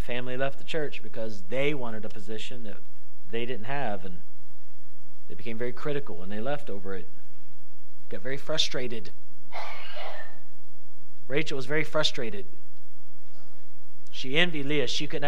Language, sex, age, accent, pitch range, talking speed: English, male, 40-59, American, 110-165 Hz, 140 wpm